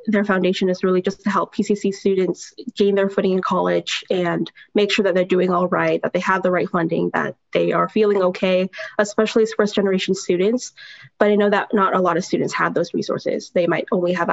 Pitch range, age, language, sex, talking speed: 180-210 Hz, 10-29, English, female, 220 wpm